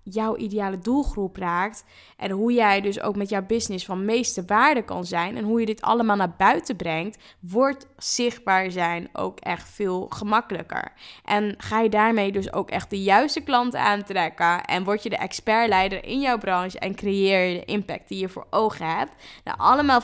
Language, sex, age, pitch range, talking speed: Dutch, female, 10-29, 195-245 Hz, 190 wpm